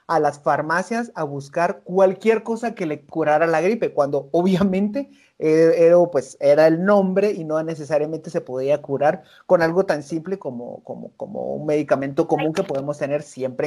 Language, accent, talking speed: Spanish, Mexican, 170 wpm